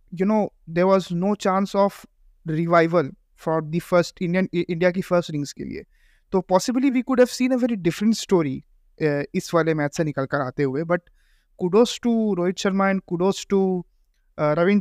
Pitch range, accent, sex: 165-215 Hz, native, male